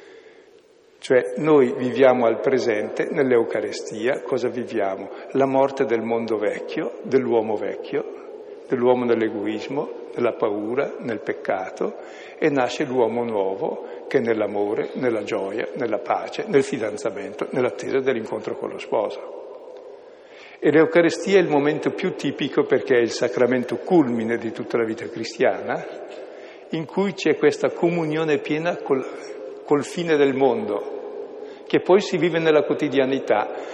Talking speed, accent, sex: 130 wpm, native, male